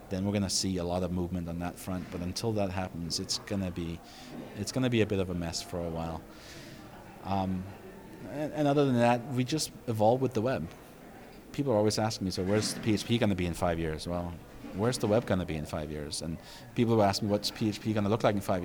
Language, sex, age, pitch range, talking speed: English, male, 30-49, 95-125 Hz, 240 wpm